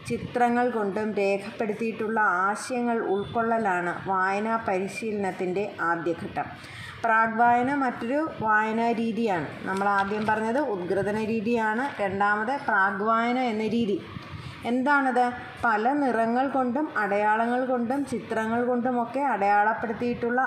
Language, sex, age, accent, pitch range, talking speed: Malayalam, female, 20-39, native, 195-250 Hz, 85 wpm